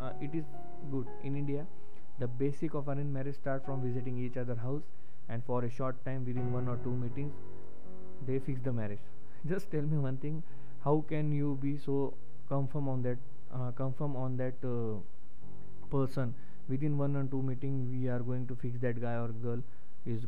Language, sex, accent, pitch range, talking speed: Hindi, male, native, 120-140 Hz, 195 wpm